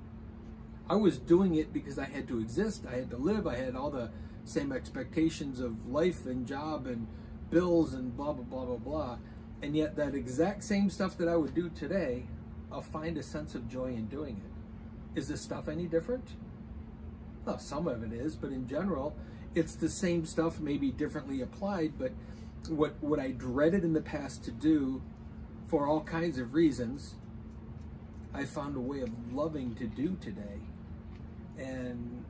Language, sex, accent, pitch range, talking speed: English, male, American, 115-155 Hz, 180 wpm